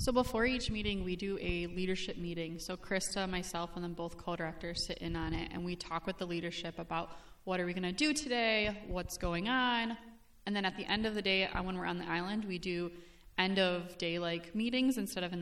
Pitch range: 175-210 Hz